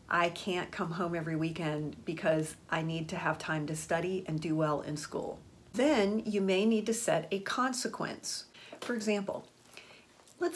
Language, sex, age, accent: English, female, 40-59, American